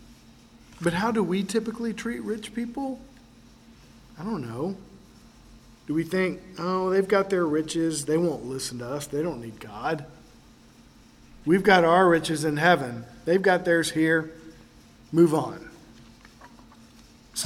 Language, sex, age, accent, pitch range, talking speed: English, male, 50-69, American, 140-180 Hz, 140 wpm